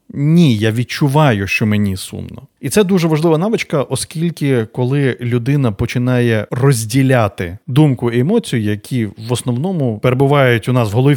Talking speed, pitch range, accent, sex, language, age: 145 wpm, 115-150 Hz, native, male, Ukrainian, 20-39